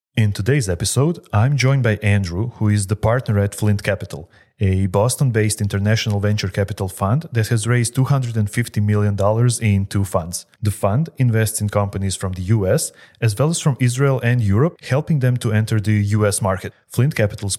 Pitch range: 105-130 Hz